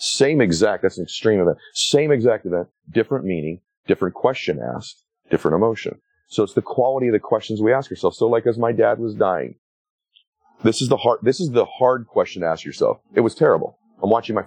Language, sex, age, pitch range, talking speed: English, male, 40-59, 95-135 Hz, 210 wpm